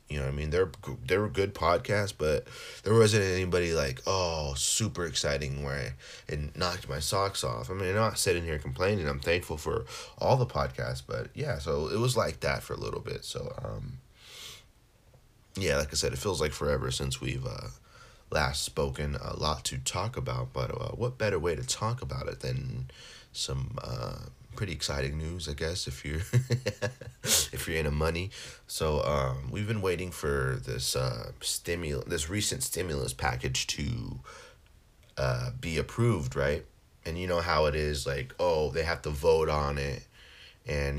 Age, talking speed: 30-49, 180 wpm